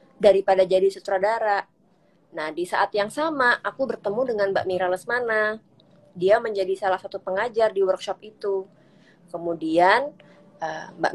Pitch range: 185-225 Hz